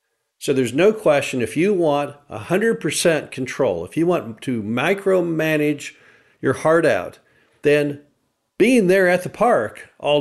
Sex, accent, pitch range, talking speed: male, American, 125-160 Hz, 140 wpm